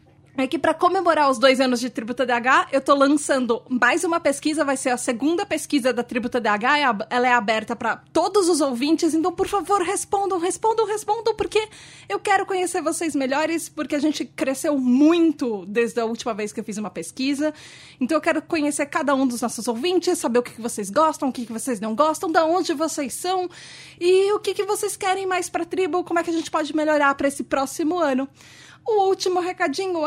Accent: Brazilian